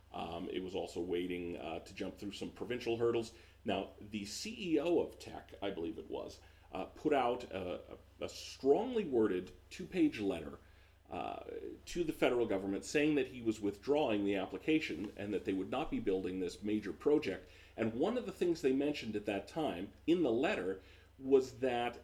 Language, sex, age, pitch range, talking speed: English, male, 40-59, 95-120 Hz, 180 wpm